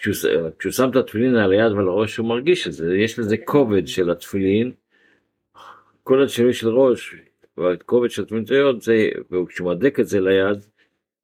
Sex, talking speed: male, 100 wpm